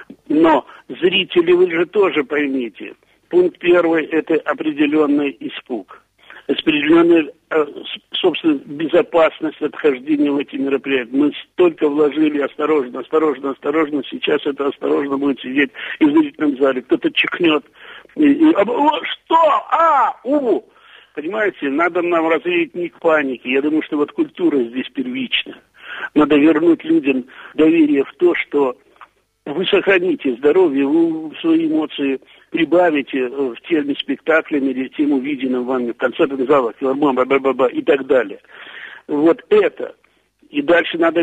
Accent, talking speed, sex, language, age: native, 125 wpm, male, Russian, 60-79